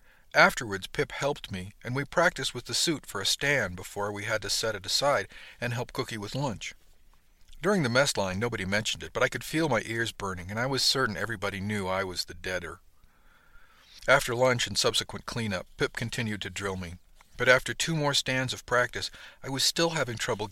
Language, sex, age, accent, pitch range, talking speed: English, male, 50-69, American, 95-135 Hz, 210 wpm